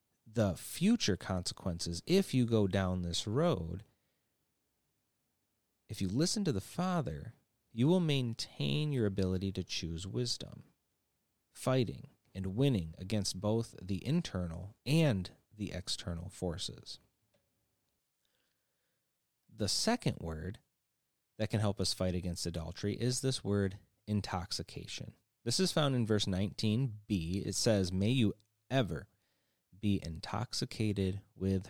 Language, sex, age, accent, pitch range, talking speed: English, male, 30-49, American, 90-120 Hz, 115 wpm